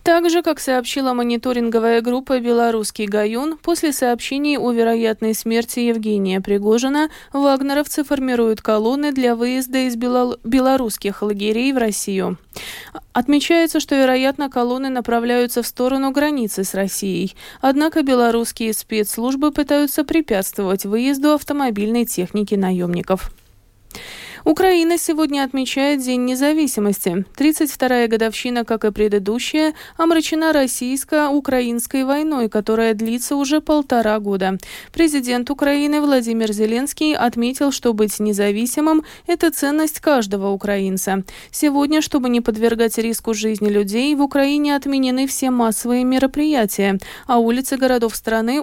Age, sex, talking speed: 20-39, female, 110 wpm